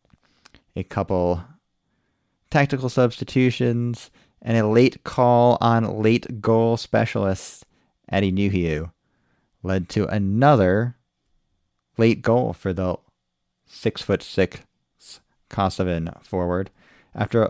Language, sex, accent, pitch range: English, male, American, 90-120 Hz